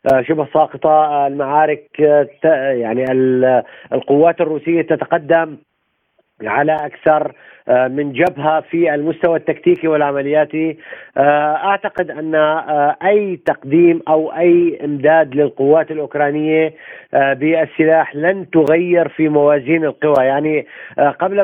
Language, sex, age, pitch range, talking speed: Arabic, male, 40-59, 145-165 Hz, 90 wpm